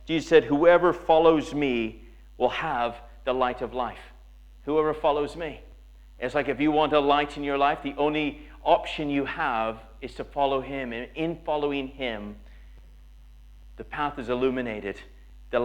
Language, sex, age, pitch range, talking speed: English, male, 40-59, 120-155 Hz, 160 wpm